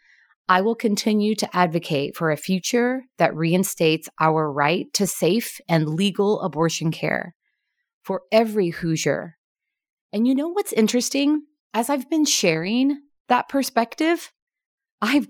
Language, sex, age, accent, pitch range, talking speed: English, female, 30-49, American, 165-245 Hz, 130 wpm